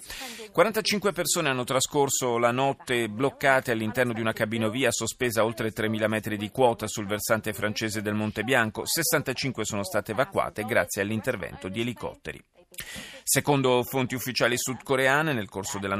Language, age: Italian, 30-49